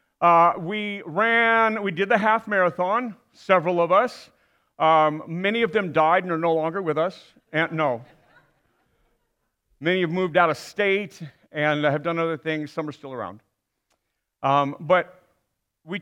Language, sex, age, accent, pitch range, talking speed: English, male, 40-59, American, 150-200 Hz, 155 wpm